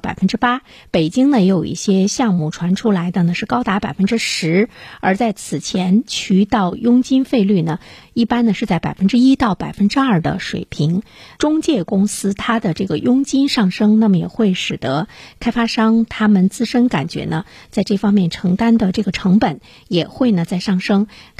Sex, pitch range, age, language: female, 180-225 Hz, 50-69, Chinese